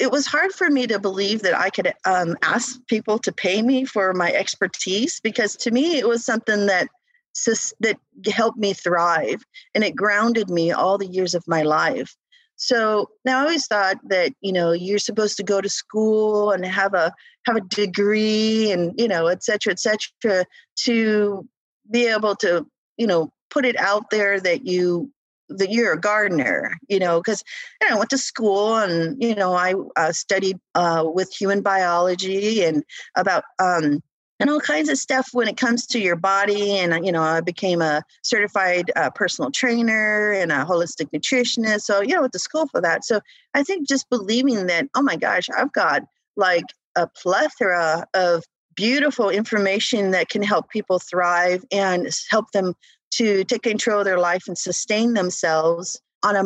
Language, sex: English, female